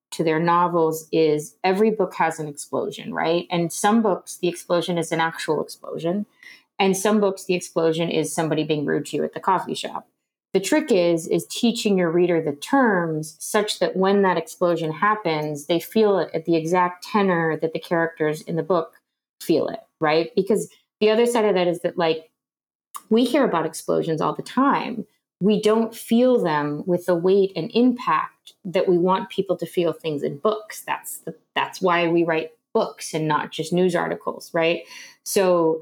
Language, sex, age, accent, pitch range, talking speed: English, female, 30-49, American, 160-200 Hz, 190 wpm